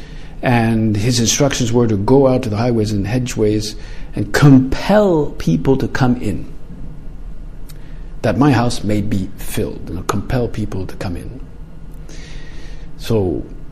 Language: English